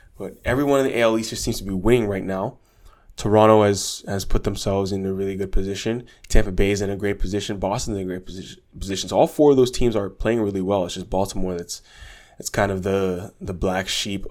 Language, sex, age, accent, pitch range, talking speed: English, male, 20-39, American, 95-110 Hz, 240 wpm